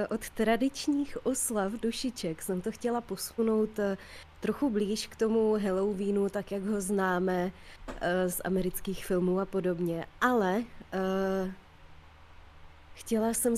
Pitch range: 185-220 Hz